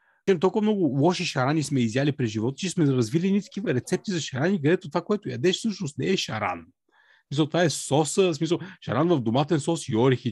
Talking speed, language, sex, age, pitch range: 205 wpm, Bulgarian, male, 40-59, 130-180 Hz